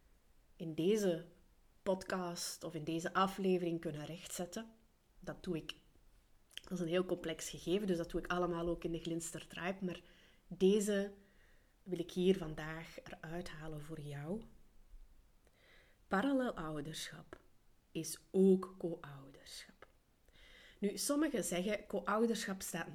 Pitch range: 165-195 Hz